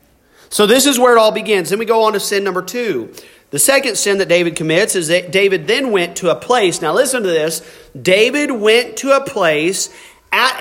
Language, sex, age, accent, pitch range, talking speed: English, male, 40-59, American, 170-250 Hz, 220 wpm